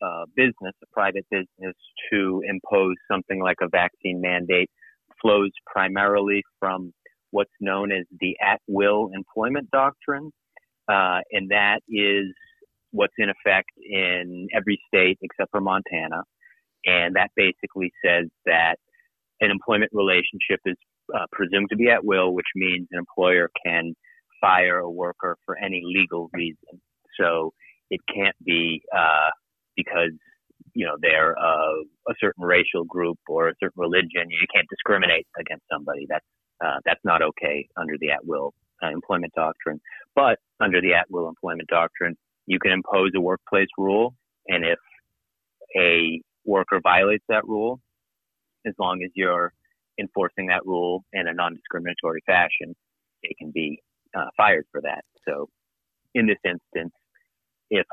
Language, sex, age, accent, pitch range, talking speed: English, male, 40-59, American, 85-105 Hz, 140 wpm